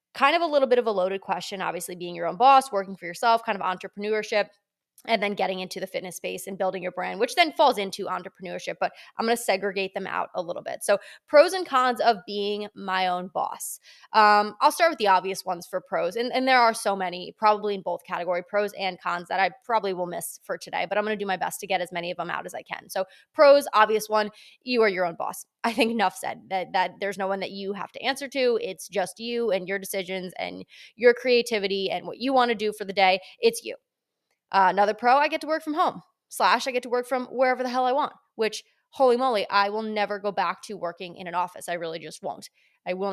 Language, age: English, 20-39